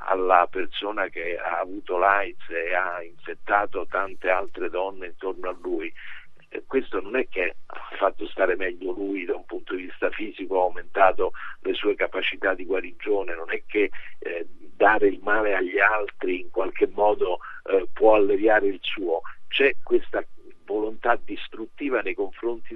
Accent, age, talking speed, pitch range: native, 50-69, 160 wpm, 355-415 Hz